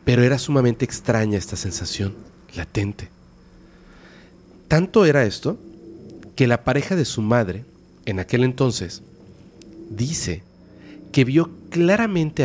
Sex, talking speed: male, 110 wpm